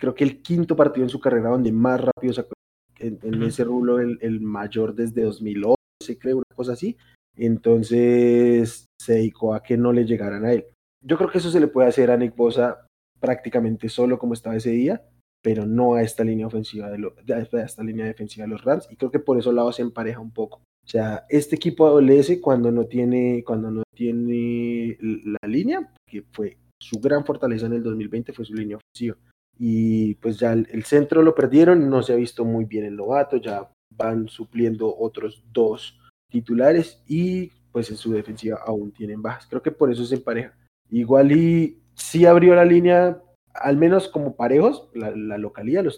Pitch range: 110-130 Hz